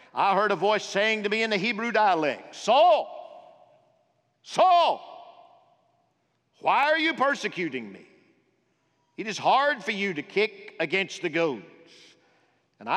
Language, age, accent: English, 50-69, American